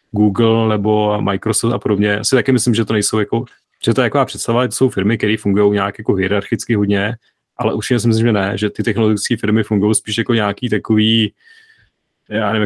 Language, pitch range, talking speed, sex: Czech, 100-115 Hz, 205 wpm, male